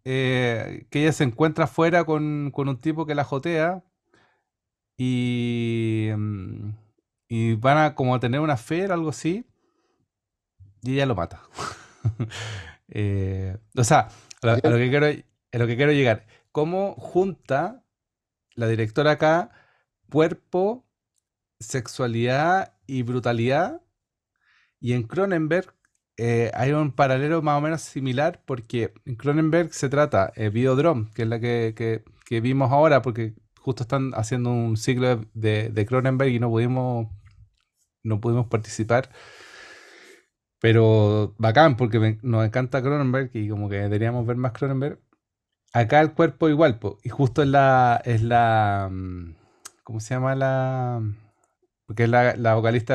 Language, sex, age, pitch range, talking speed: Spanish, male, 40-59, 110-150 Hz, 140 wpm